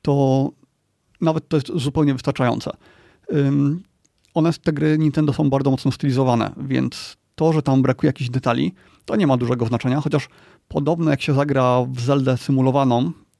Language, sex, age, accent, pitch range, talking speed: Polish, male, 30-49, native, 130-150 Hz, 150 wpm